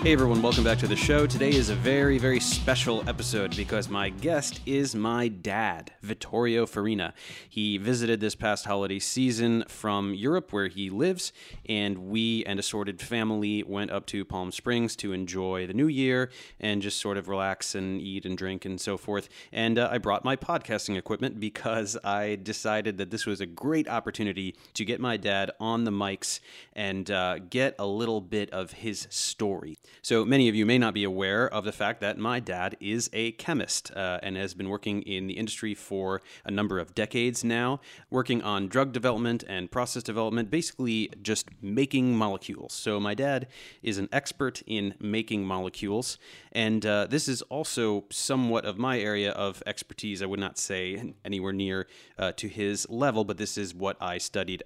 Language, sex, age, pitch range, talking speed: English, male, 30-49, 100-120 Hz, 185 wpm